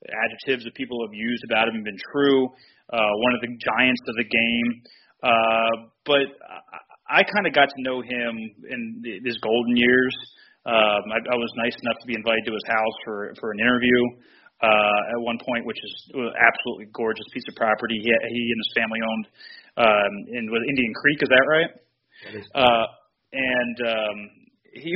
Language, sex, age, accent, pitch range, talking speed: English, male, 30-49, American, 115-135 Hz, 190 wpm